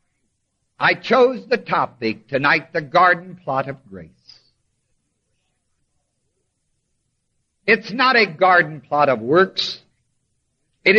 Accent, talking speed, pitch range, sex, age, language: American, 100 wpm, 120-190 Hz, male, 60-79, English